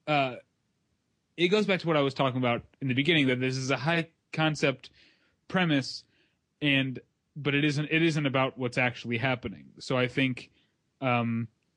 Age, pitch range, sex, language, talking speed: 30-49, 115-135 Hz, male, English, 175 wpm